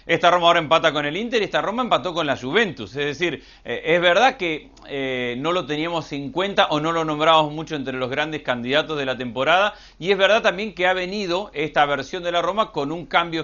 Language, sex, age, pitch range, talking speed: Spanish, male, 40-59, 140-185 Hz, 235 wpm